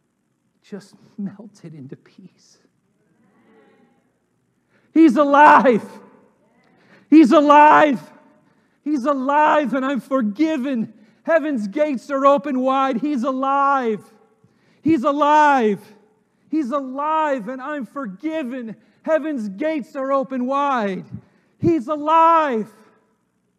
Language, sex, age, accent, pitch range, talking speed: English, male, 40-59, American, 215-290 Hz, 85 wpm